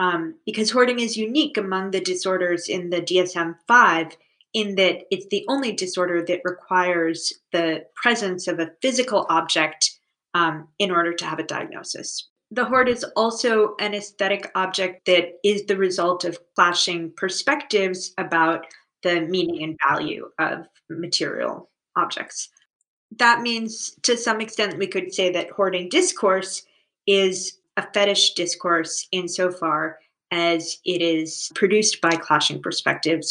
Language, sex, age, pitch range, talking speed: English, female, 20-39, 165-200 Hz, 135 wpm